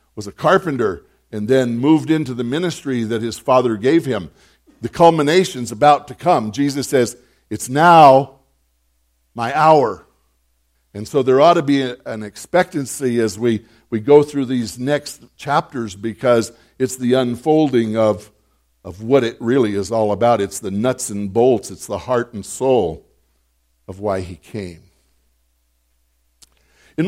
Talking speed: 150 wpm